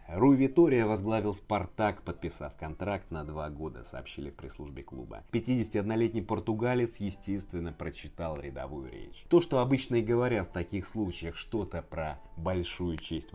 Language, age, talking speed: Russian, 30-49, 140 wpm